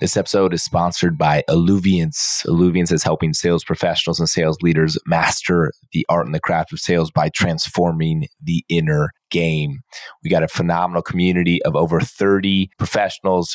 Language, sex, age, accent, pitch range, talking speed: English, male, 20-39, American, 80-95 Hz, 160 wpm